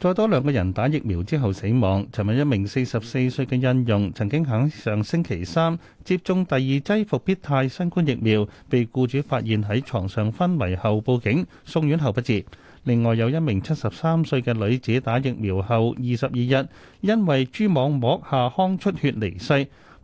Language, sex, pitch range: Chinese, male, 110-150 Hz